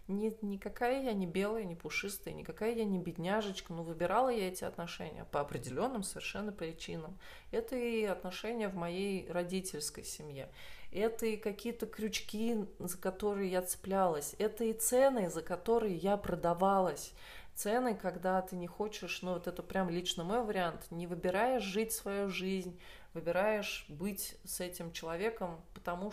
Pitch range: 175-220 Hz